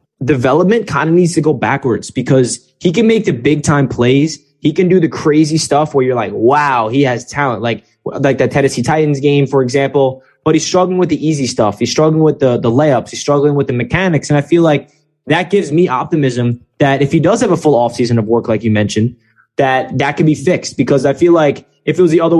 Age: 20-39